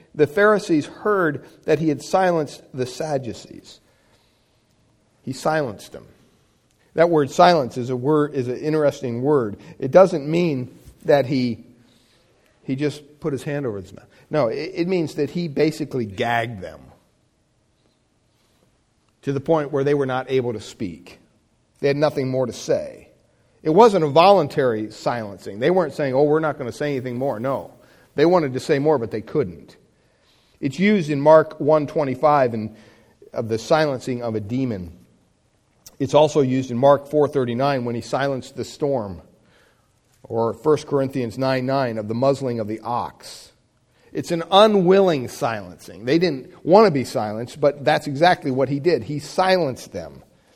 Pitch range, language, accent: 125-165 Hz, English, American